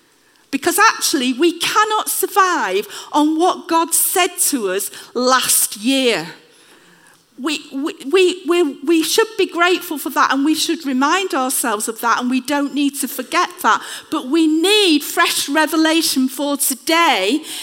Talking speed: 145 wpm